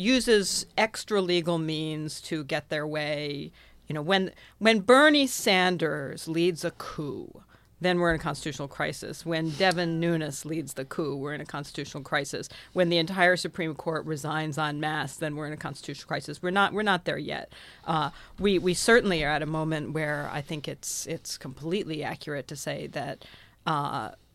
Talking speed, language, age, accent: 180 wpm, English, 40-59, American